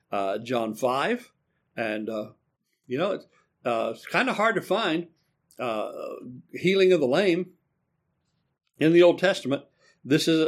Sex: male